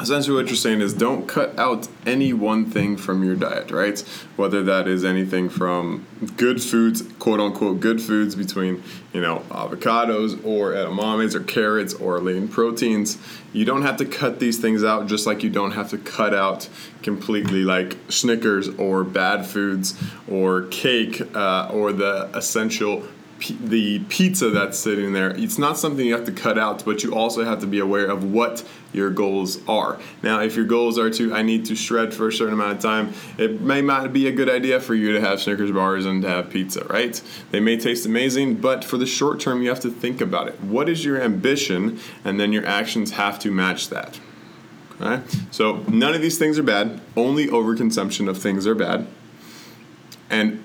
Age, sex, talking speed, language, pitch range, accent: 20-39, male, 200 wpm, English, 100-120 Hz, American